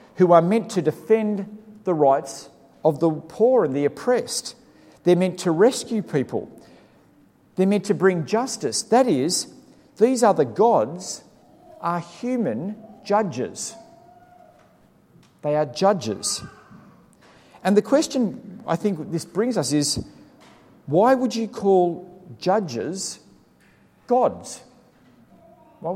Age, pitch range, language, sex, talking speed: 50-69, 150-215 Hz, English, male, 115 wpm